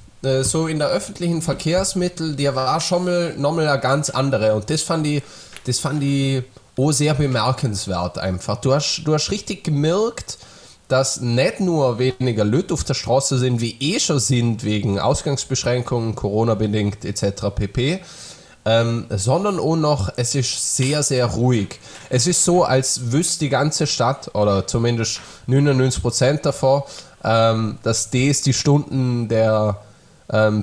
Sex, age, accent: male, 20-39, German